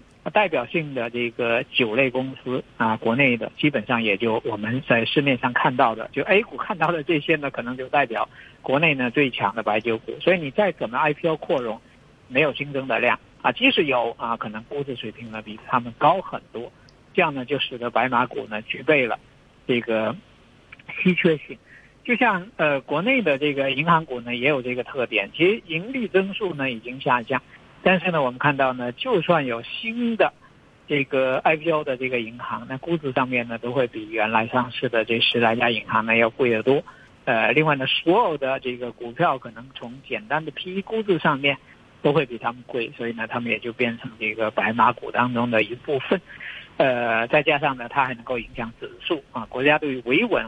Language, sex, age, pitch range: Chinese, male, 50-69, 120-150 Hz